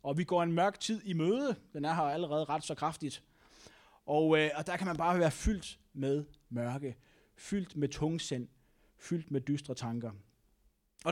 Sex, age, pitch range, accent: male, 20-39, 140-185 Hz, native